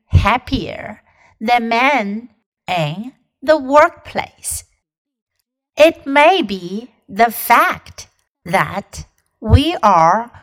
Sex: female